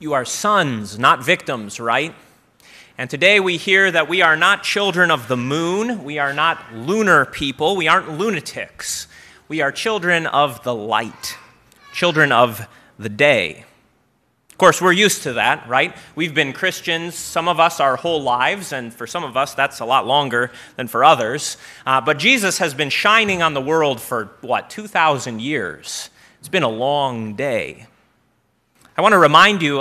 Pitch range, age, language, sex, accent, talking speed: 130-180 Hz, 30-49, English, male, American, 175 wpm